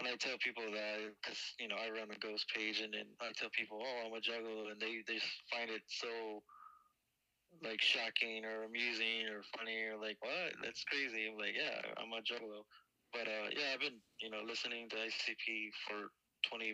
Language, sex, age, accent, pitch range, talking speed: English, male, 20-39, American, 105-115 Hz, 205 wpm